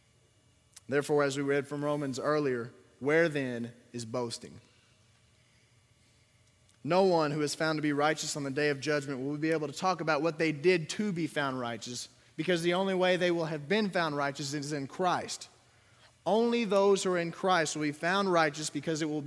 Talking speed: 195 wpm